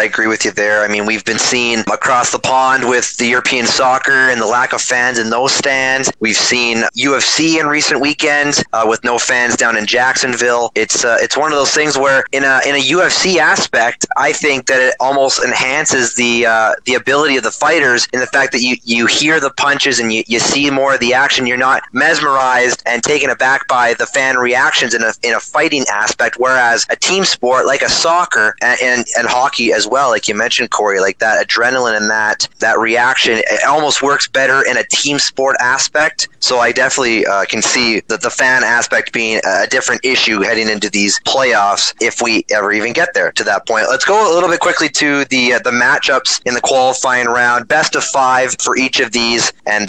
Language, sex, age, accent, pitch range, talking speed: English, male, 30-49, American, 115-135 Hz, 220 wpm